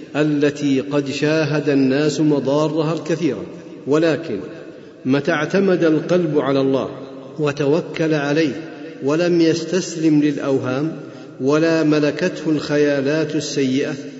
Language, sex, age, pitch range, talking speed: Arabic, male, 50-69, 145-165 Hz, 90 wpm